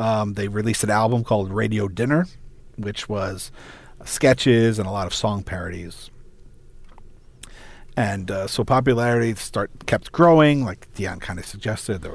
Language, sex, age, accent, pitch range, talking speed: English, male, 40-59, American, 100-125 Hz, 155 wpm